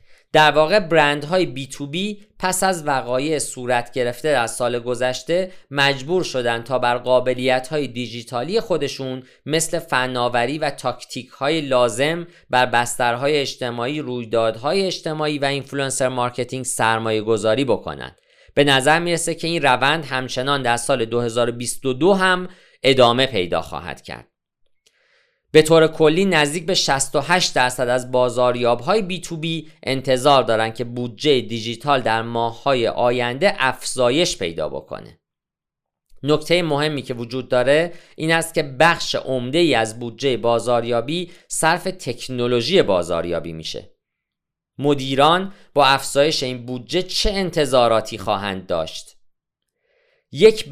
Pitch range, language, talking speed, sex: 120-160 Hz, Persian, 120 wpm, male